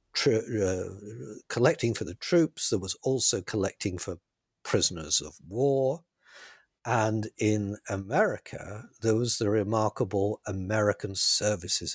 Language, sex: English, male